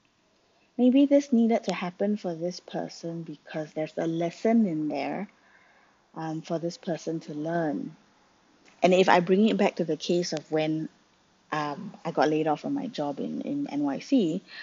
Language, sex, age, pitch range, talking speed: English, female, 20-39, 155-205 Hz, 170 wpm